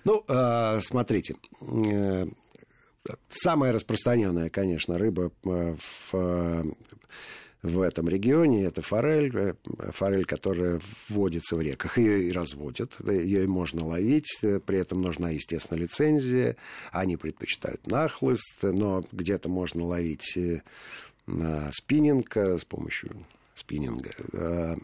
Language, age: Russian, 50-69